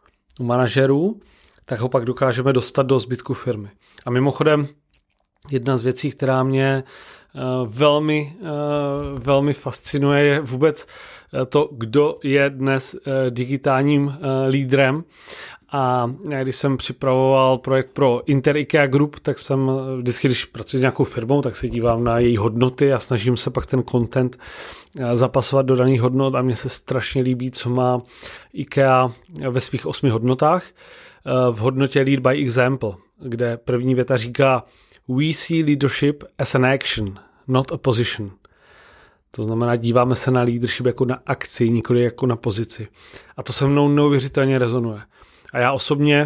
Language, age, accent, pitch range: Czech, 30-49, native, 125-145 Hz